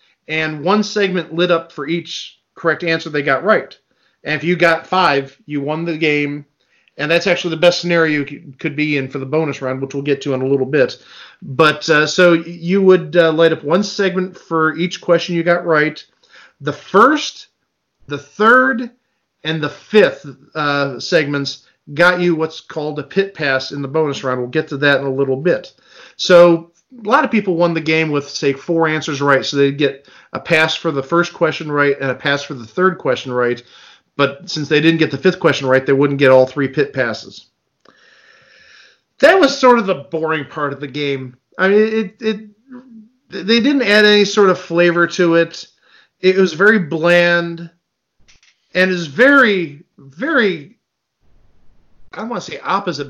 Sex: male